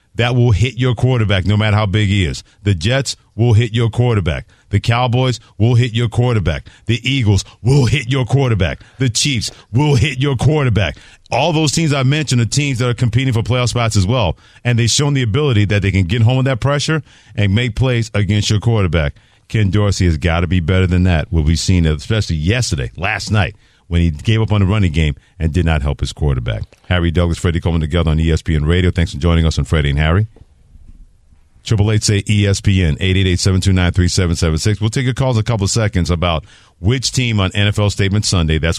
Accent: American